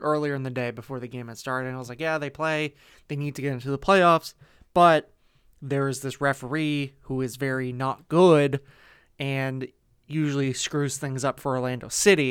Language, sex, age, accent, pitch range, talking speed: English, male, 20-39, American, 125-155 Hz, 200 wpm